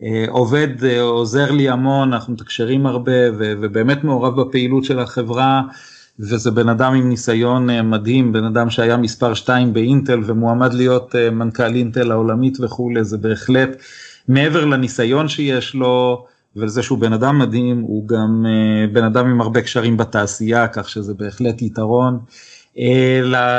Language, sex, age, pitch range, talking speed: Hebrew, male, 30-49, 115-130 Hz, 140 wpm